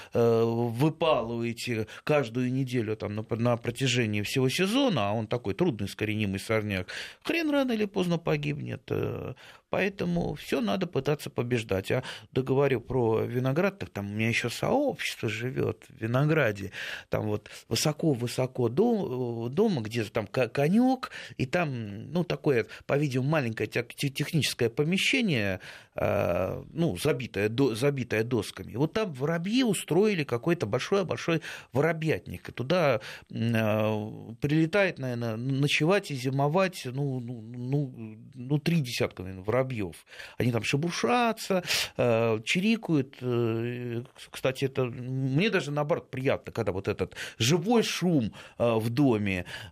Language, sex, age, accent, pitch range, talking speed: Russian, male, 30-49, native, 115-155 Hz, 120 wpm